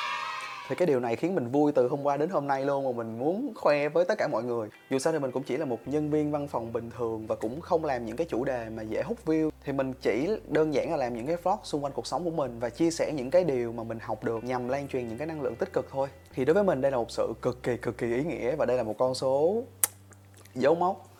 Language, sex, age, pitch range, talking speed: Vietnamese, male, 20-39, 110-140 Hz, 305 wpm